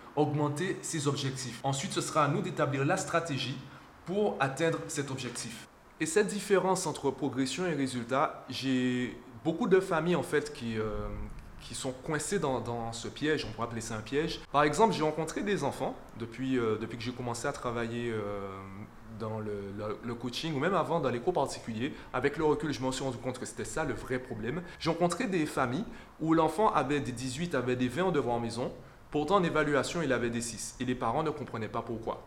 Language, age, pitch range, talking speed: French, 20-39, 120-155 Hz, 210 wpm